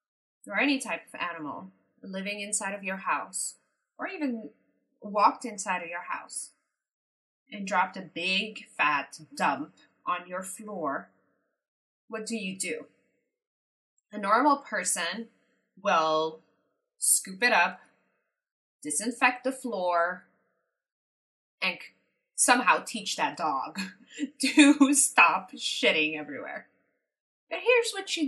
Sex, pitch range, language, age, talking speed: female, 195-275 Hz, English, 20-39, 110 wpm